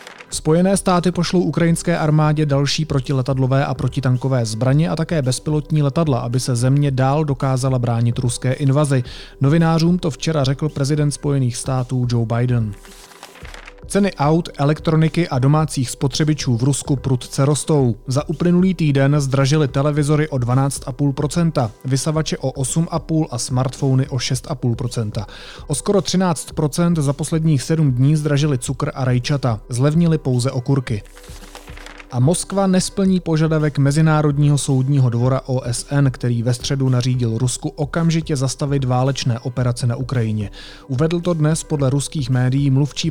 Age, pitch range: 30-49, 125-150 Hz